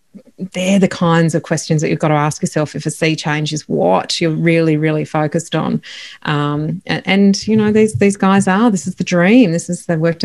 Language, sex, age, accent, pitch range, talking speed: English, female, 30-49, Australian, 160-190 Hz, 230 wpm